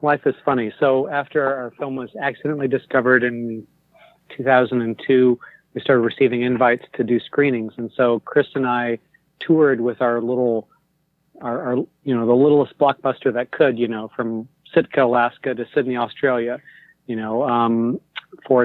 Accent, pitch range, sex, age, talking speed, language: American, 120-140 Hz, male, 40-59, 160 wpm, English